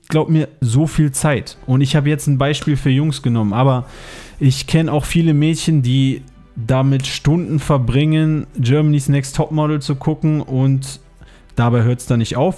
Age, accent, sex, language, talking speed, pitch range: 20-39, German, male, German, 170 wpm, 125-155 Hz